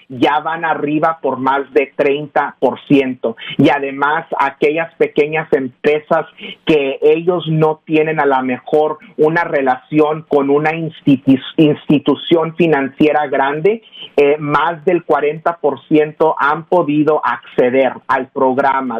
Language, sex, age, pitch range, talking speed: Spanish, male, 50-69, 135-165 Hz, 110 wpm